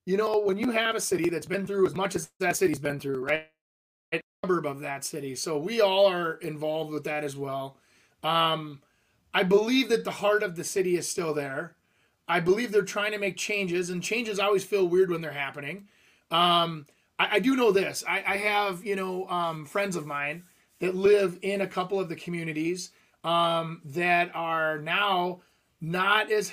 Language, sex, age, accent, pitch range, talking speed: English, male, 30-49, American, 165-205 Hz, 195 wpm